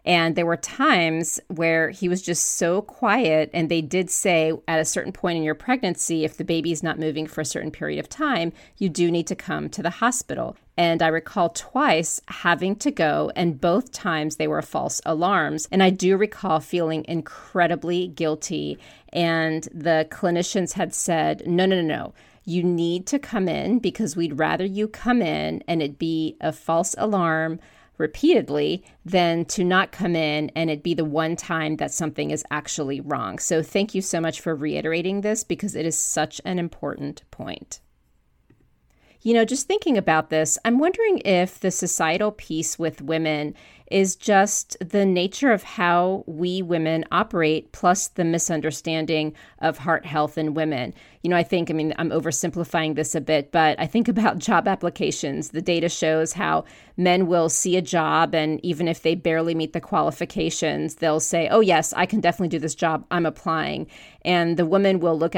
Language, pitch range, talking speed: English, 160-185 Hz, 185 wpm